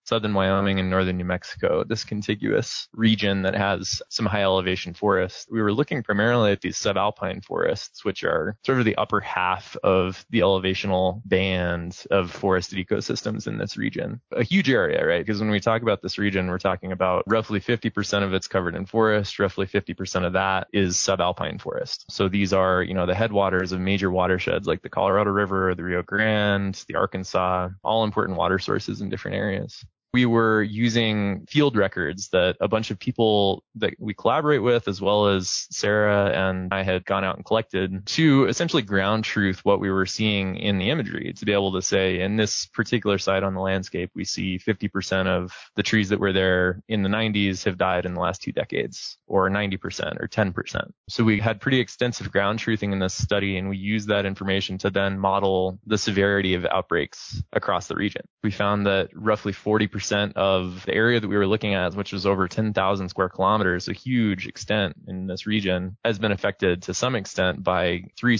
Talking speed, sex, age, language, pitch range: 195 wpm, male, 20-39, English, 95-110 Hz